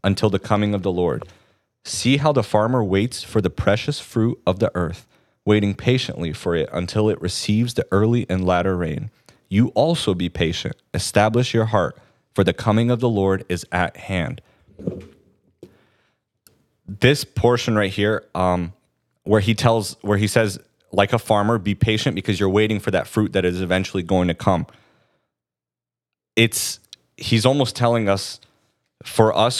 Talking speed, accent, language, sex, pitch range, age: 165 wpm, American, English, male, 95-115 Hz, 30-49